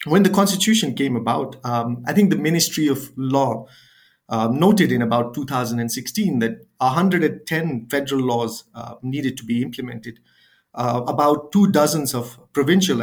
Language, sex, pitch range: English, male, 120-155 Hz